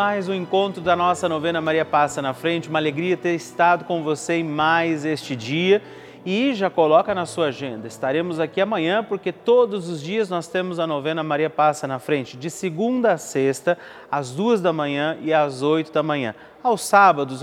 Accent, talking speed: Brazilian, 195 wpm